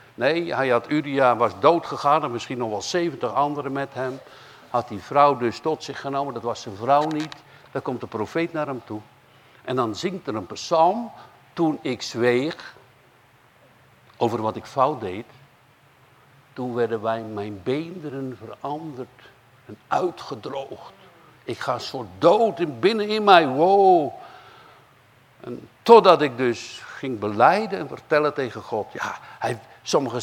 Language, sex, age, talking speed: Dutch, male, 60-79, 155 wpm